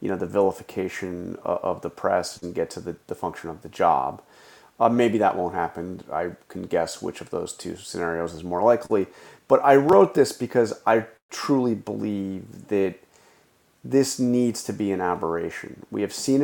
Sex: male